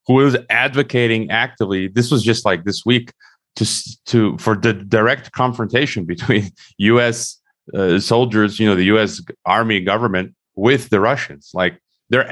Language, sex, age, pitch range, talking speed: English, male, 30-49, 95-115 Hz, 150 wpm